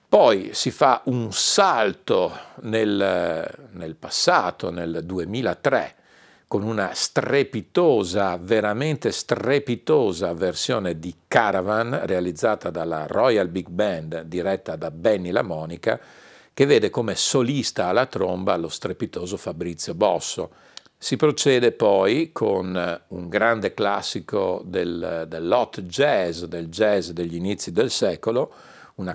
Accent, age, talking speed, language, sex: native, 50-69, 110 wpm, Italian, male